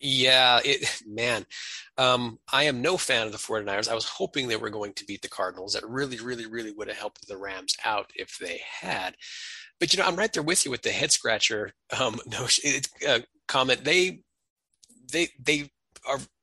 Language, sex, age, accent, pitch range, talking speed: English, male, 30-49, American, 110-135 Hz, 195 wpm